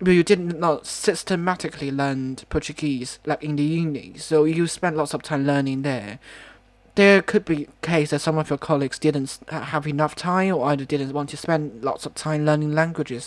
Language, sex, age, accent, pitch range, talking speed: English, male, 20-39, British, 145-180 Hz, 200 wpm